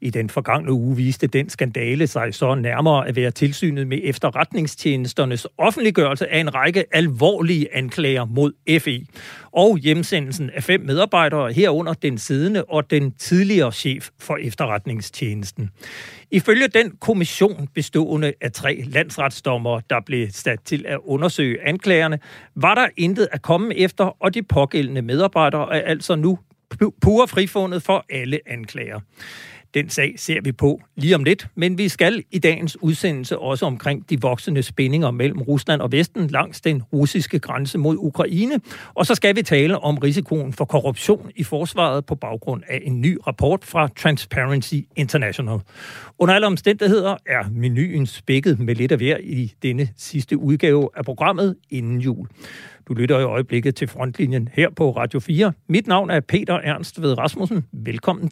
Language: Danish